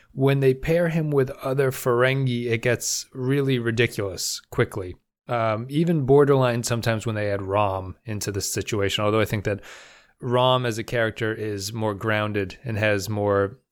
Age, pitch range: 30-49, 105-130 Hz